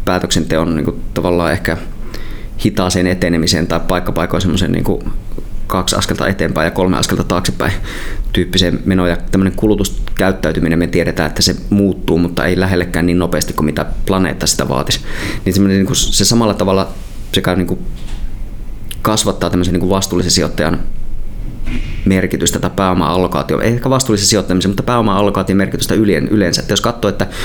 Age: 20-39